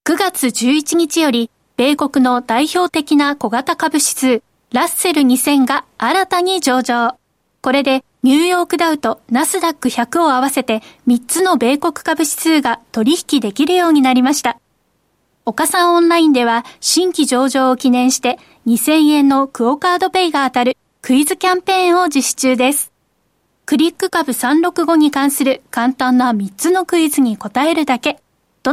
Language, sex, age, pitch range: Japanese, female, 20-39, 255-325 Hz